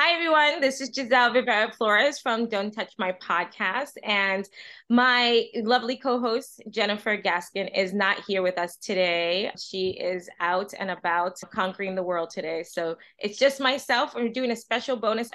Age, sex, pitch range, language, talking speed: 20-39, female, 180-220 Hz, English, 165 wpm